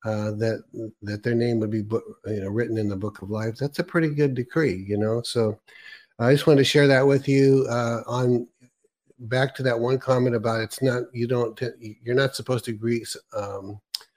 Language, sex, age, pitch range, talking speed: English, male, 50-69, 110-130 Hz, 215 wpm